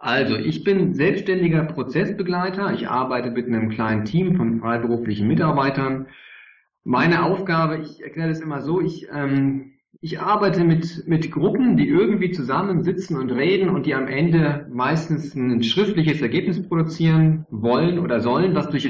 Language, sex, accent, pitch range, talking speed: German, male, German, 115-165 Hz, 150 wpm